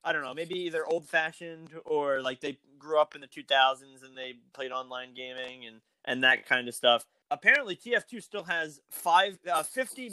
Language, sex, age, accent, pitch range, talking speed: English, male, 20-39, American, 135-185 Hz, 190 wpm